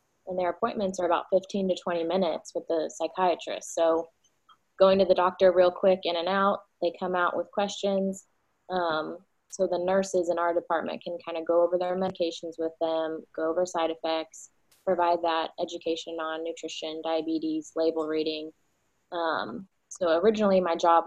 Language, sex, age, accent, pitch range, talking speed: English, female, 20-39, American, 165-190 Hz, 170 wpm